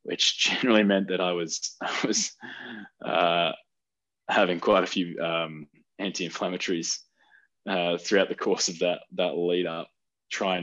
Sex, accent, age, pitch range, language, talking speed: male, Australian, 20-39, 80-100 Hz, English, 140 wpm